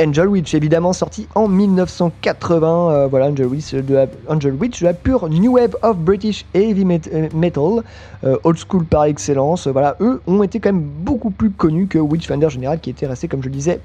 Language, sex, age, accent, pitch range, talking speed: French, male, 30-49, French, 140-195 Hz, 200 wpm